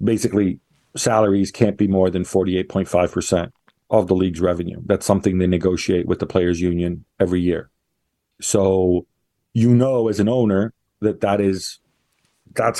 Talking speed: 160 wpm